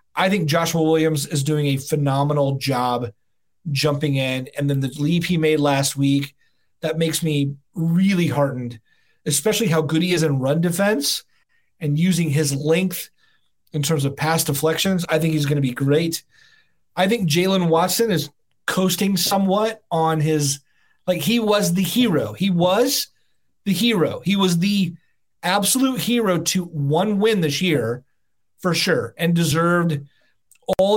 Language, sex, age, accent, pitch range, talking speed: English, male, 30-49, American, 145-185 Hz, 155 wpm